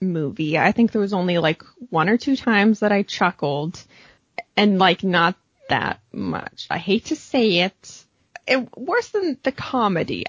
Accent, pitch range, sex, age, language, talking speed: American, 210-325 Hz, female, 20-39, English, 170 wpm